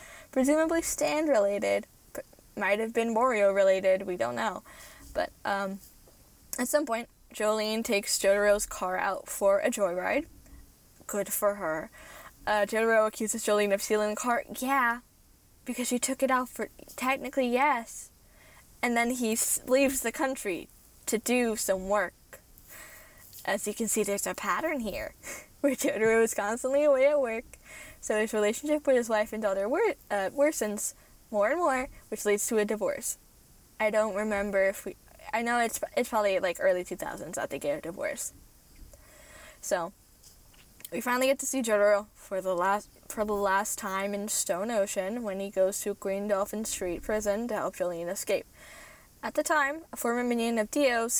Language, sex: English, female